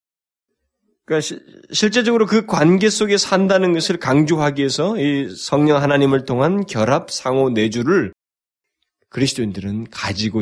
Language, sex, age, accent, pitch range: Korean, male, 20-39, native, 110-180 Hz